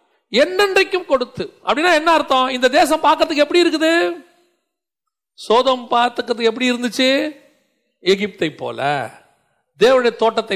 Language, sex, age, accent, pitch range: Tamil, male, 40-59, native, 170-280 Hz